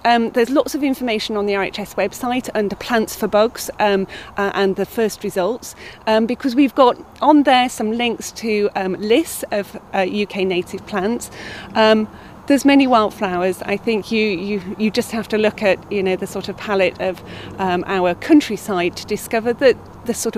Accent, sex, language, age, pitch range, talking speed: British, female, English, 40-59, 195-250 Hz, 190 wpm